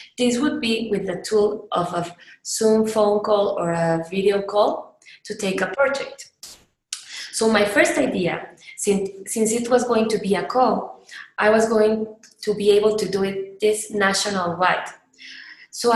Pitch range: 180-225 Hz